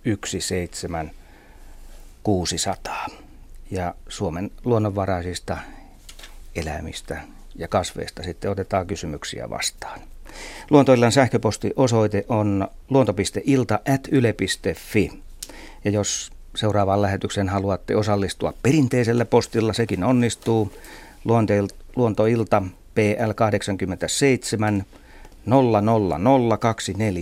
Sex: male